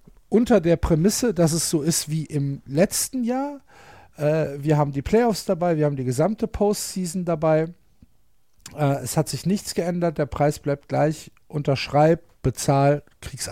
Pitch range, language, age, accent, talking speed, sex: 145-200 Hz, German, 50-69, German, 160 wpm, male